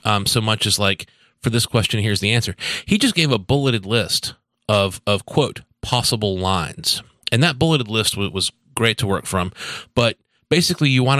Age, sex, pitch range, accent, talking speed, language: 30-49, male, 100-120 Hz, American, 190 wpm, English